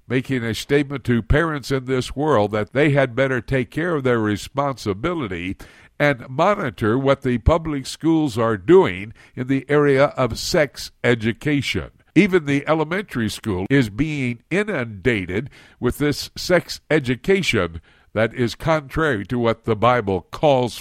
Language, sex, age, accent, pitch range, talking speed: English, male, 60-79, American, 105-140 Hz, 145 wpm